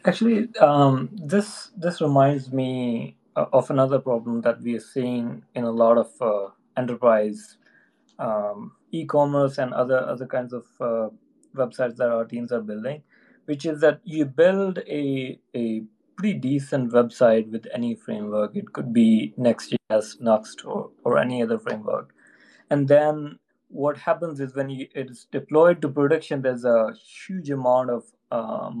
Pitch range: 120-150 Hz